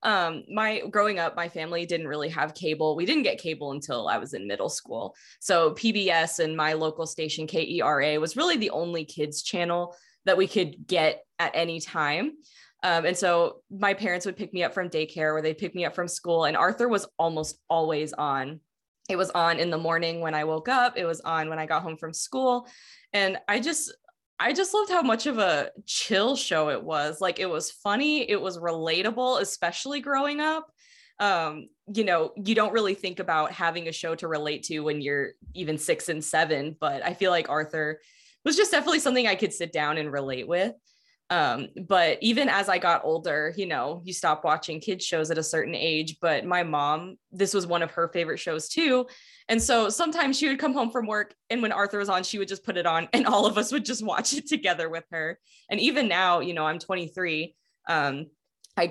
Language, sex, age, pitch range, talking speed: English, female, 20-39, 160-240 Hz, 215 wpm